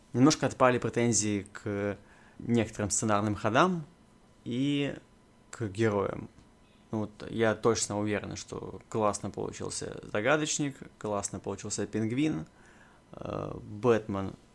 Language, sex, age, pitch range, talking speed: Russian, male, 20-39, 105-125 Hz, 85 wpm